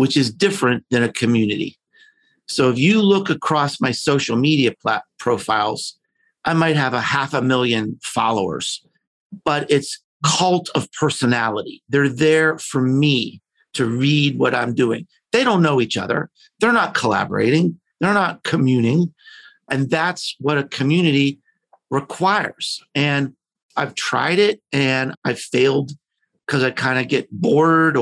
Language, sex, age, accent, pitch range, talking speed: English, male, 50-69, American, 130-175 Hz, 145 wpm